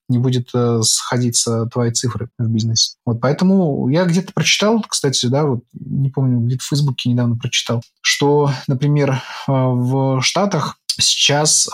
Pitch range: 120-140 Hz